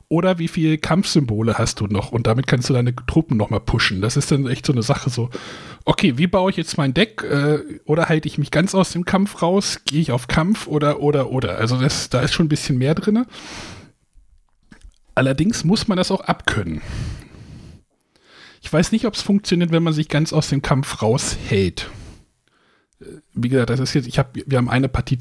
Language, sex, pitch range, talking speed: German, male, 120-155 Hz, 210 wpm